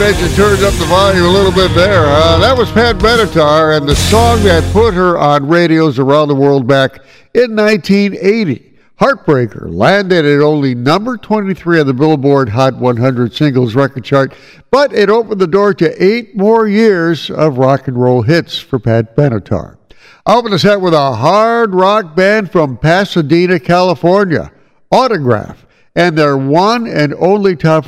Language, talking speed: English, 170 wpm